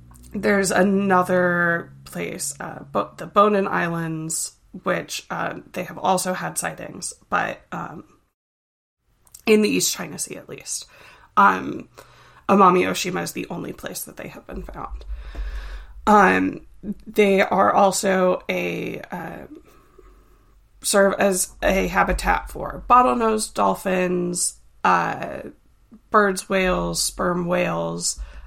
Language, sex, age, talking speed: English, female, 20-39, 110 wpm